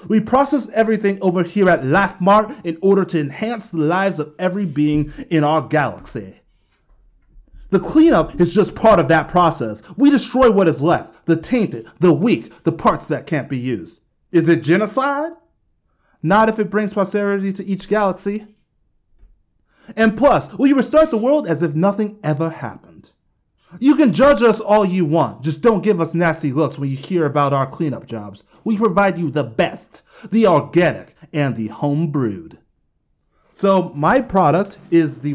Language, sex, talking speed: English, male, 170 wpm